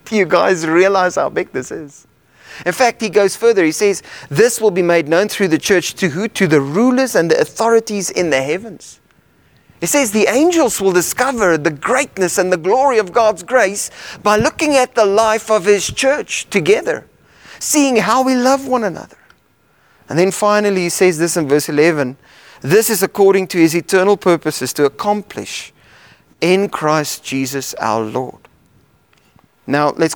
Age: 30-49